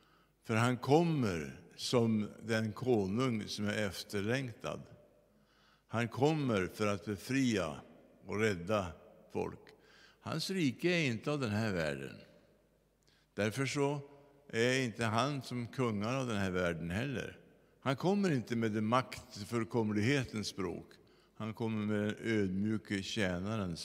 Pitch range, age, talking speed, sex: 95-120 Hz, 60-79, 120 wpm, male